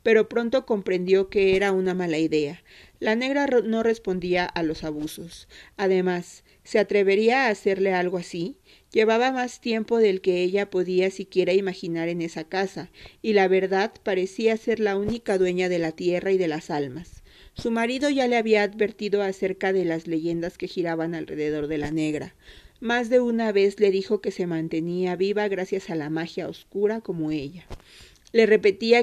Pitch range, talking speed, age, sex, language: 170-215 Hz, 175 wpm, 40-59, female, Spanish